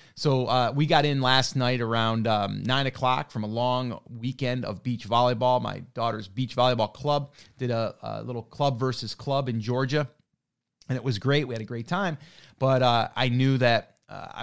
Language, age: English, 30-49